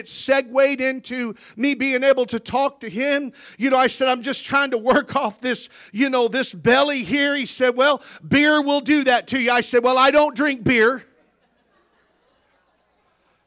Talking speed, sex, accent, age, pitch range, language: 185 wpm, male, American, 50-69, 230-275 Hz, English